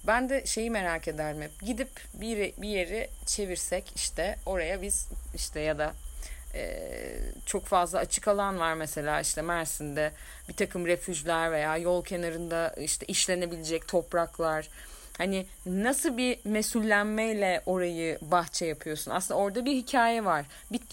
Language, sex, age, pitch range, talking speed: Turkish, female, 30-49, 165-215 Hz, 140 wpm